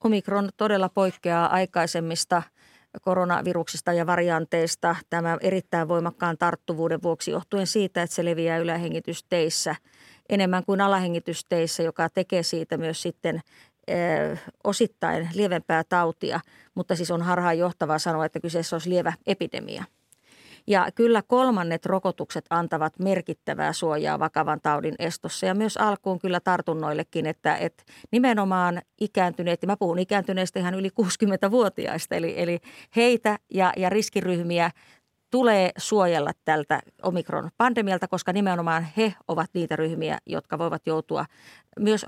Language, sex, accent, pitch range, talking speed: Finnish, female, native, 170-200 Hz, 125 wpm